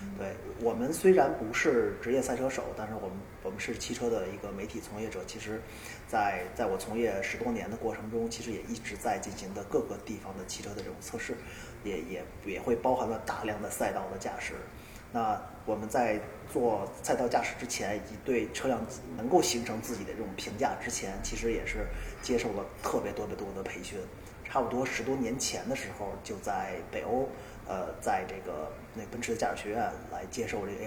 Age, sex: 20-39, male